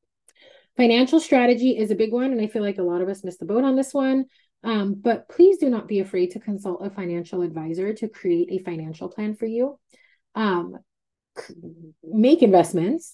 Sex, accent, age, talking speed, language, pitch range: female, American, 30-49, 190 wpm, English, 185-235 Hz